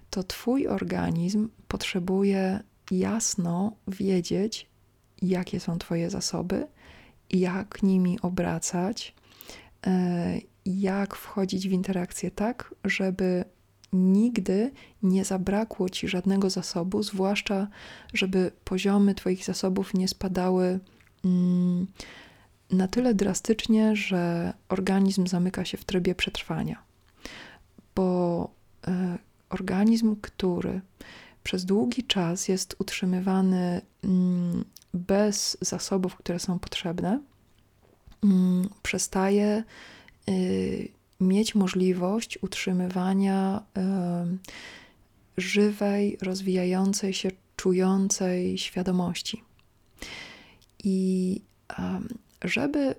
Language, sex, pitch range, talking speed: Polish, female, 180-200 Hz, 75 wpm